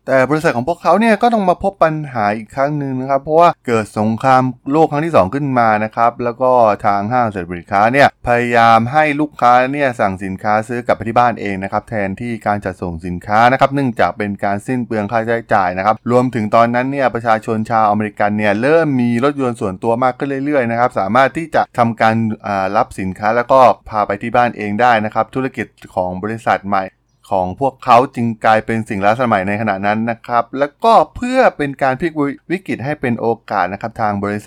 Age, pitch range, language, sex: 20-39, 105-135 Hz, Thai, male